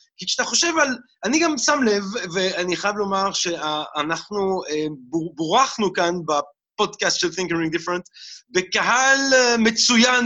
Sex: male